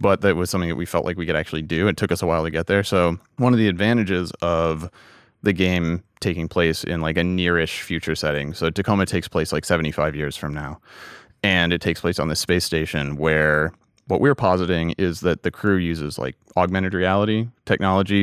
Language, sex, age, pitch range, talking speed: English, male, 30-49, 80-100 Hz, 215 wpm